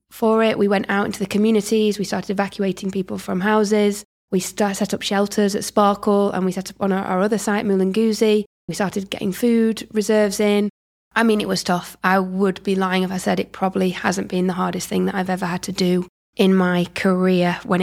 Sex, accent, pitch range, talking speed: female, British, 185-205 Hz, 220 wpm